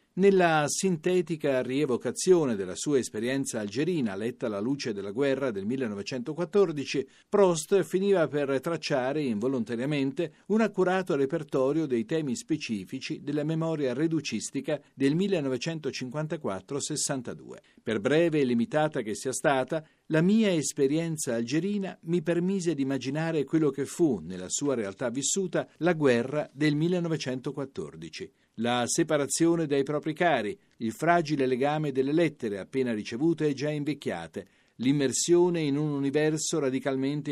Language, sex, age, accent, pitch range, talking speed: Italian, male, 50-69, native, 135-170 Hz, 120 wpm